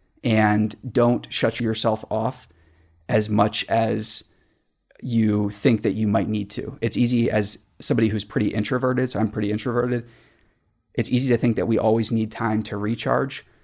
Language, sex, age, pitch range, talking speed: English, male, 30-49, 110-120 Hz, 165 wpm